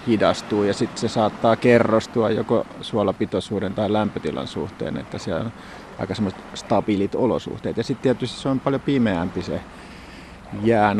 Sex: male